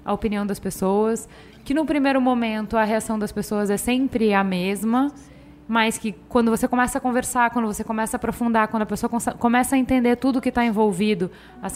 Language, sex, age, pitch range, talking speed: Portuguese, female, 10-29, 195-245 Hz, 200 wpm